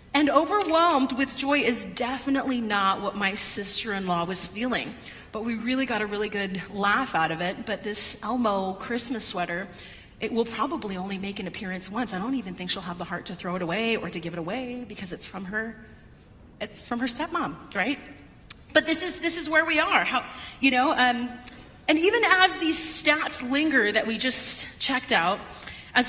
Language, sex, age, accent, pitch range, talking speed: English, female, 30-49, American, 205-280 Hz, 210 wpm